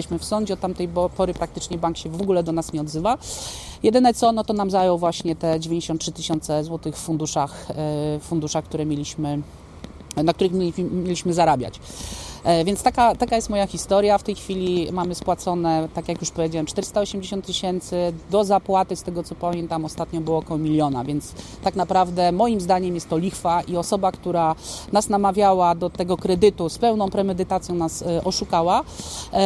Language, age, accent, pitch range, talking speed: Polish, 30-49, native, 170-200 Hz, 165 wpm